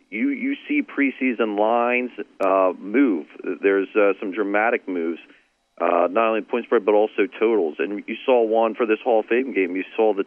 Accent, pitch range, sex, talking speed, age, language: American, 100-125 Hz, male, 195 wpm, 40-59, English